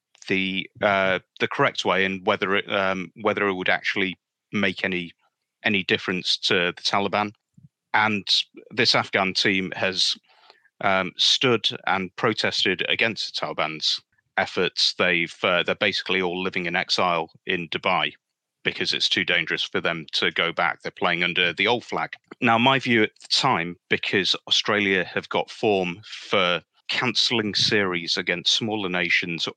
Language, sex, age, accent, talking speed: English, male, 30-49, British, 150 wpm